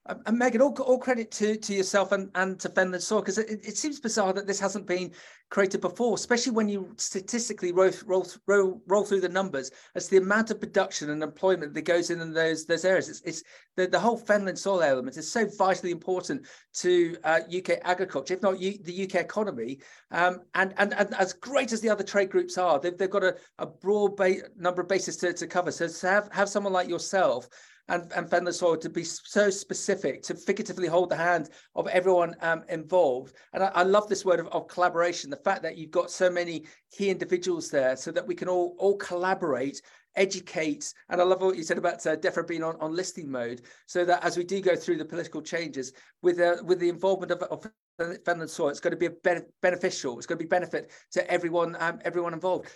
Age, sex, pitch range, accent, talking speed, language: 40-59, male, 175-205 Hz, British, 225 wpm, English